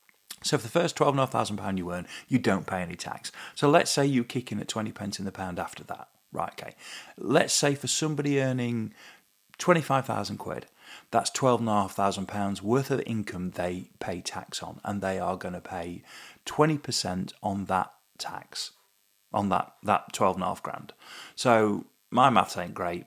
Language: English